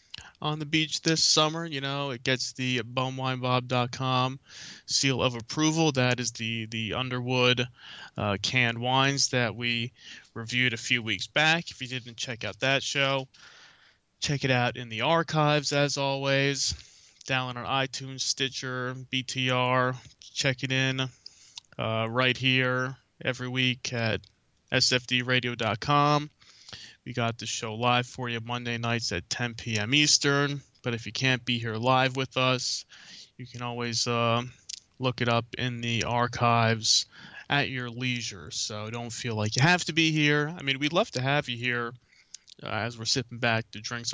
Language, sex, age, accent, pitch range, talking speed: English, male, 20-39, American, 115-135 Hz, 160 wpm